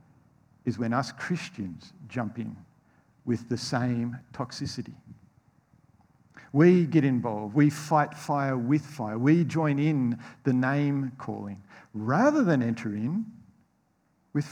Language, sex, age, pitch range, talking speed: English, male, 50-69, 120-165 Hz, 120 wpm